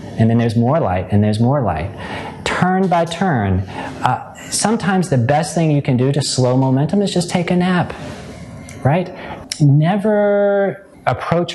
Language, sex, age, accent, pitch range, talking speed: English, male, 30-49, American, 105-140 Hz, 160 wpm